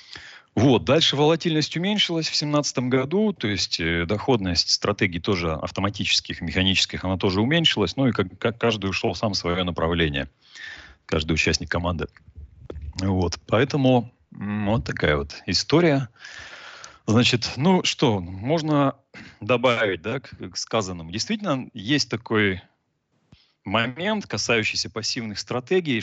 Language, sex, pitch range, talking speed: Russian, male, 95-125 Hz, 120 wpm